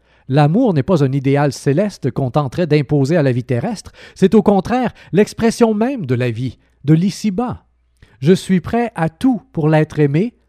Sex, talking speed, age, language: male, 175 wpm, 40-59, French